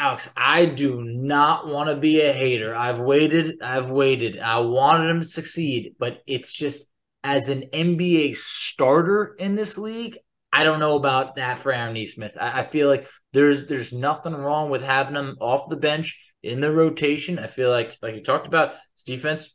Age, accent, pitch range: 20-39, American, 125-155 Hz